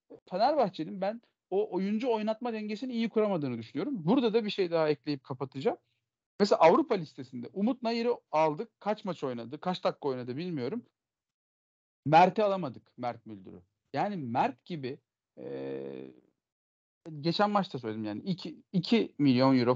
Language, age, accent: Turkish, 40-59, native